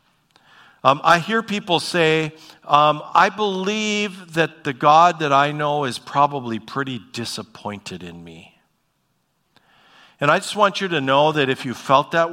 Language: English